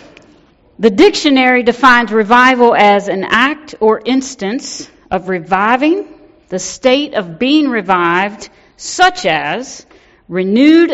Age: 50-69